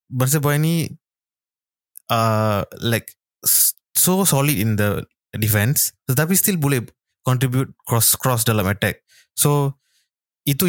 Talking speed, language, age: 100 wpm, Malay, 20-39